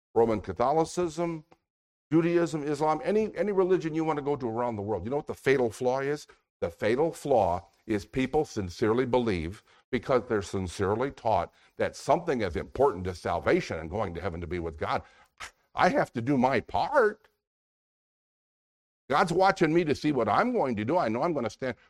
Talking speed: 190 wpm